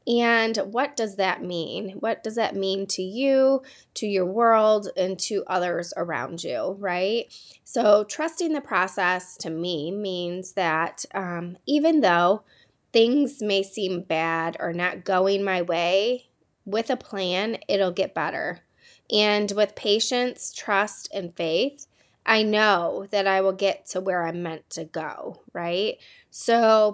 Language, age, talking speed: English, 20-39, 145 wpm